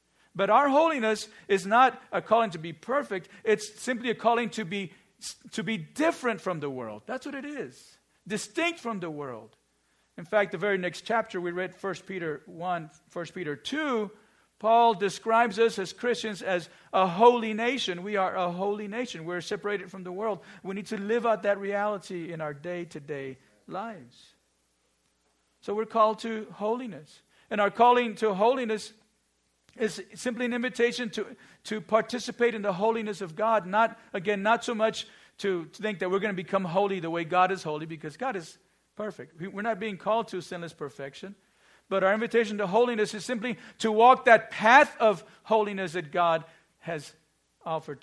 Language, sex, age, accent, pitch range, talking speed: English, male, 50-69, American, 180-230 Hz, 180 wpm